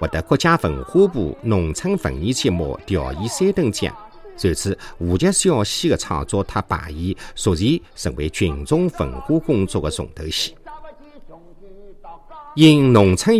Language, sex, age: Chinese, male, 50-69